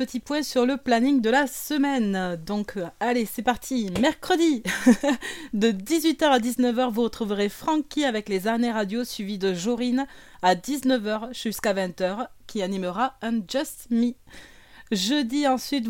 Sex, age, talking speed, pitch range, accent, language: female, 30-49, 145 wpm, 205-270 Hz, French, French